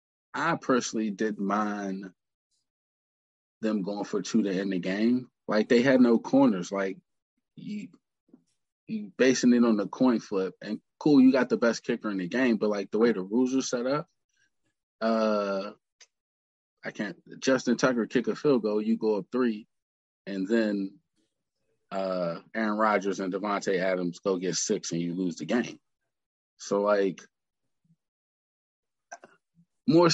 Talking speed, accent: 155 wpm, American